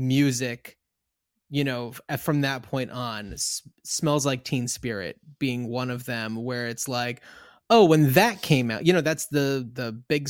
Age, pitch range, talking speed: 20-39, 125-150 Hz, 175 wpm